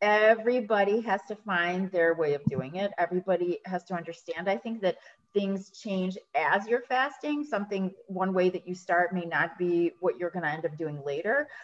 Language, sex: English, female